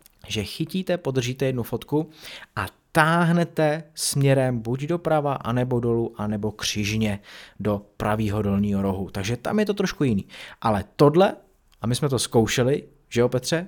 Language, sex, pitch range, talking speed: Czech, male, 105-155 Hz, 155 wpm